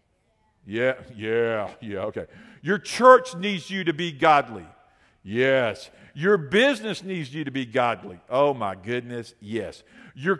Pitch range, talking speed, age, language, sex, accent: 115-175 Hz, 140 wpm, 50-69, English, male, American